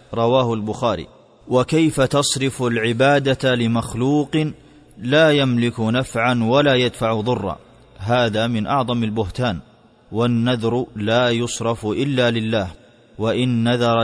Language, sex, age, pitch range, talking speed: Arabic, male, 30-49, 110-125 Hz, 100 wpm